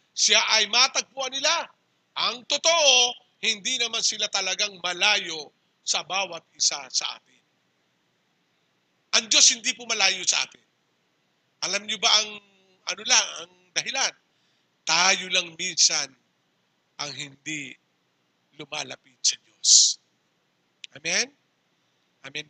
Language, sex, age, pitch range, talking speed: English, male, 50-69, 175-250 Hz, 110 wpm